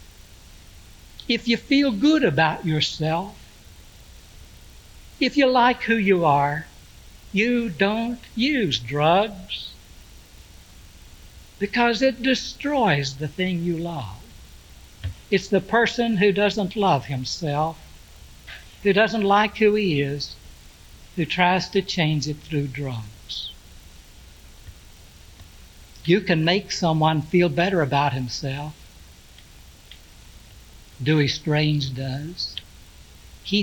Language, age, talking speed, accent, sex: English, 60-79, 100 wpm, American, male